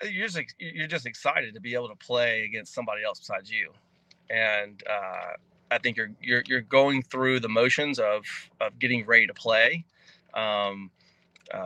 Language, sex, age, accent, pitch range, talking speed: English, male, 30-49, American, 115-140 Hz, 170 wpm